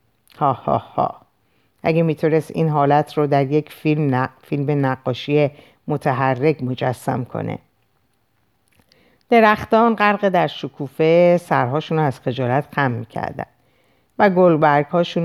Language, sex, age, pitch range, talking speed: Persian, female, 50-69, 140-175 Hz, 100 wpm